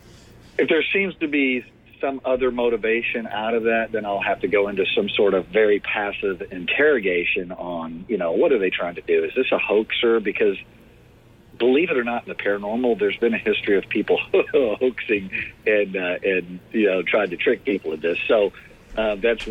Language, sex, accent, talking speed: English, male, American, 200 wpm